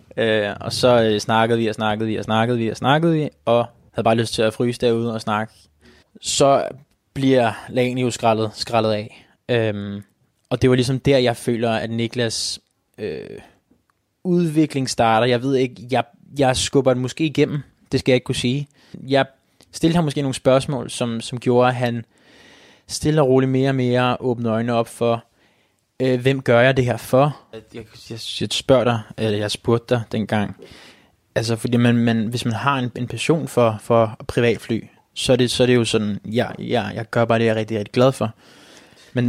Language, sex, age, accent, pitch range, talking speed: Danish, male, 20-39, native, 110-130 Hz, 195 wpm